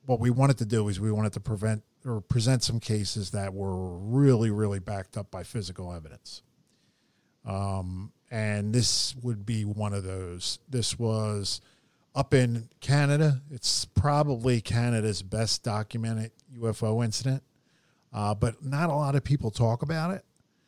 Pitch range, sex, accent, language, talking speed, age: 105-125 Hz, male, American, English, 155 wpm, 50-69